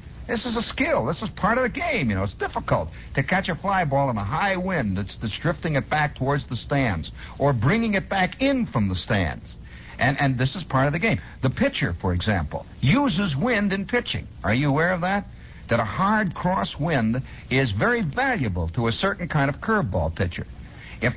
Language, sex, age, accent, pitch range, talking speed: English, male, 60-79, American, 110-180 Hz, 215 wpm